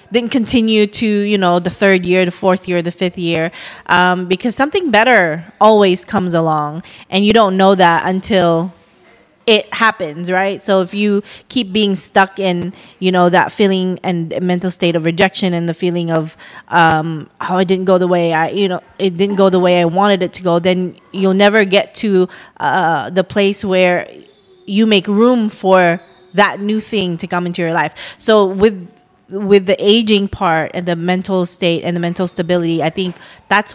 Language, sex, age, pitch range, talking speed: English, female, 20-39, 175-205 Hz, 190 wpm